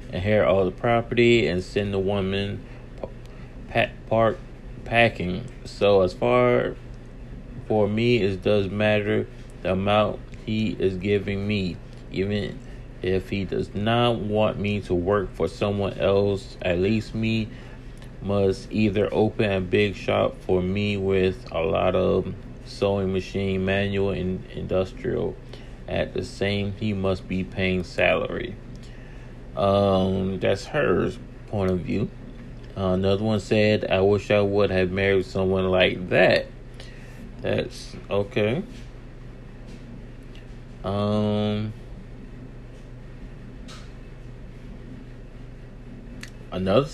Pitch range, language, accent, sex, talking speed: 95-115 Hz, English, American, male, 110 wpm